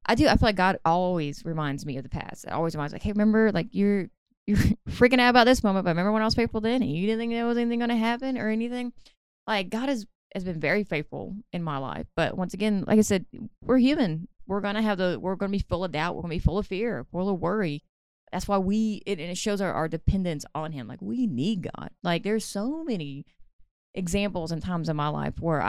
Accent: American